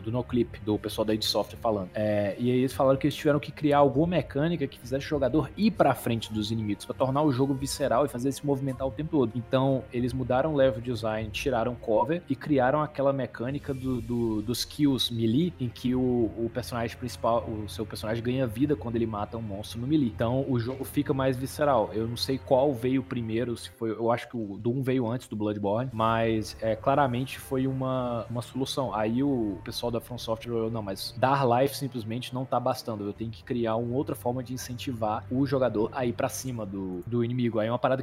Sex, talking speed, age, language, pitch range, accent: male, 225 wpm, 20-39, Portuguese, 115-135 Hz, Brazilian